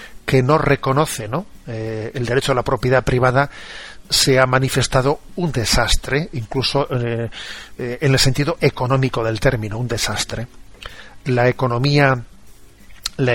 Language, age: Spanish, 40-59